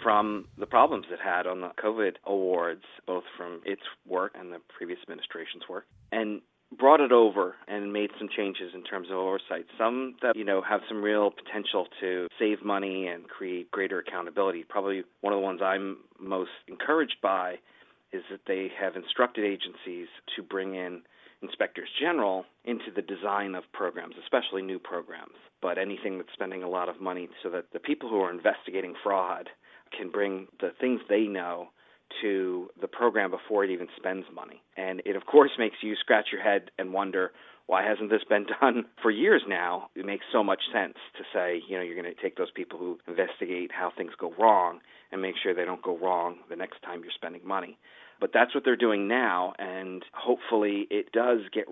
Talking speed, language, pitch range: 195 wpm, English, 90-105 Hz